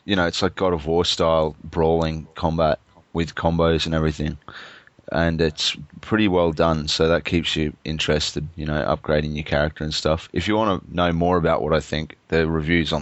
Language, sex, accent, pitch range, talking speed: English, male, Australian, 80-90 Hz, 205 wpm